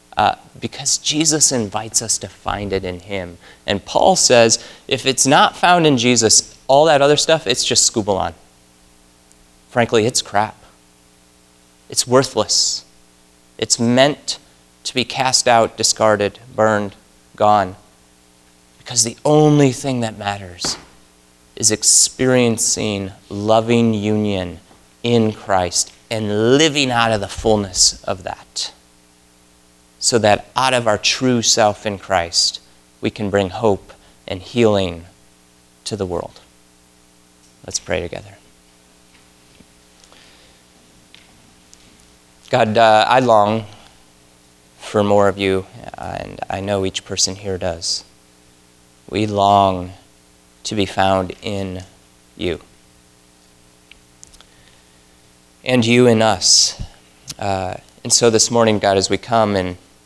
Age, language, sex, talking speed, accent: 30-49, English, male, 115 wpm, American